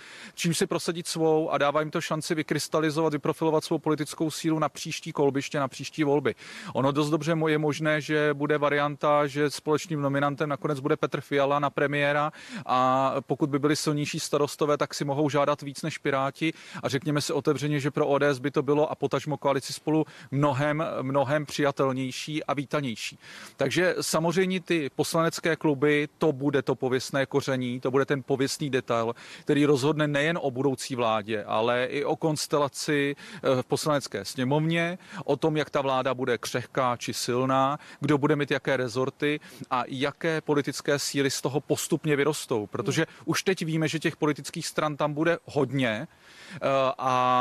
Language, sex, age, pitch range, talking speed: Czech, male, 30-49, 135-155 Hz, 165 wpm